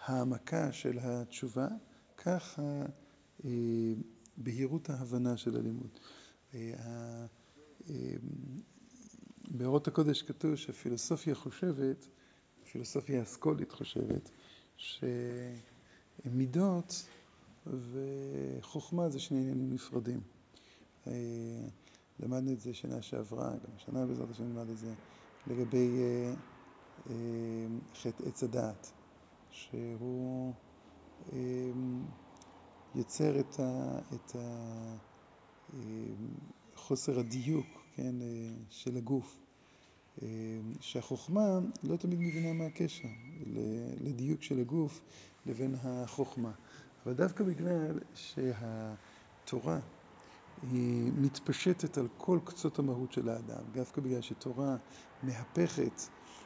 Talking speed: 75 wpm